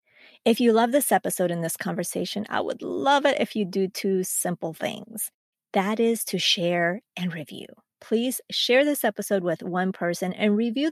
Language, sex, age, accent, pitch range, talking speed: English, female, 30-49, American, 180-220 Hz, 180 wpm